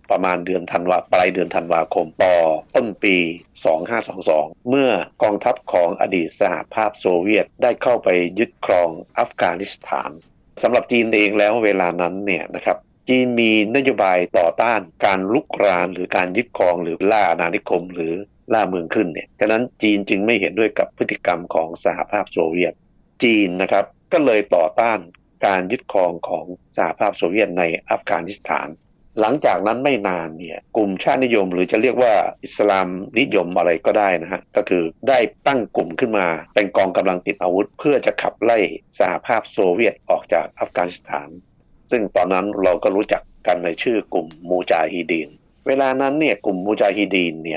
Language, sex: Thai, male